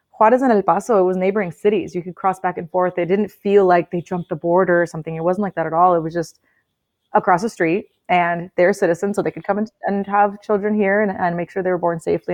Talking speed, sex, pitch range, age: 265 wpm, female, 170-205 Hz, 30-49